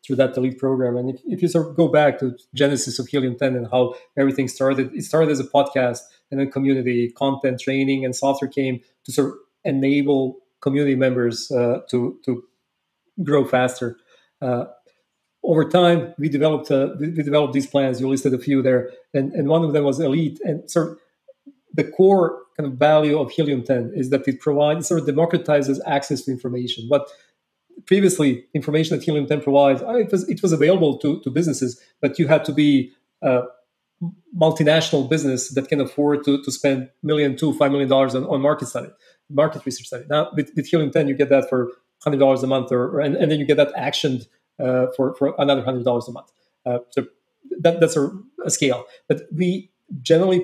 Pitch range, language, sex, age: 130-155 Hz, English, male, 40-59